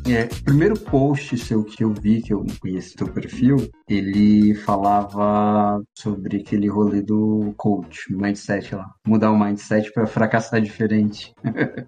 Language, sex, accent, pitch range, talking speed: Portuguese, male, Brazilian, 105-130 Hz, 145 wpm